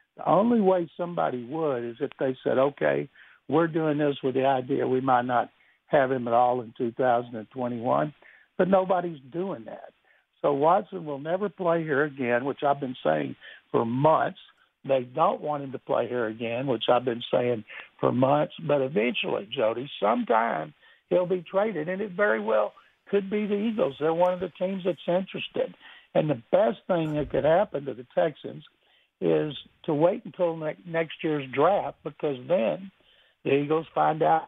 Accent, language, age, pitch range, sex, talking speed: American, English, 60-79, 135-175 Hz, male, 175 wpm